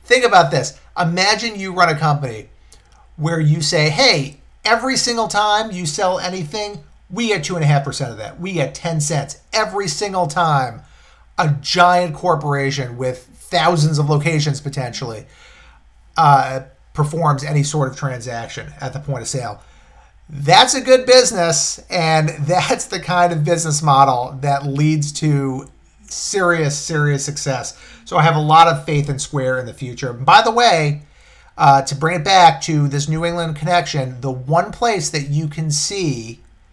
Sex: male